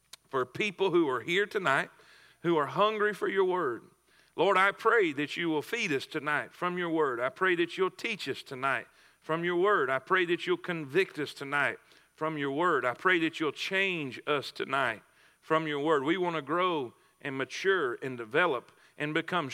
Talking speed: 195 wpm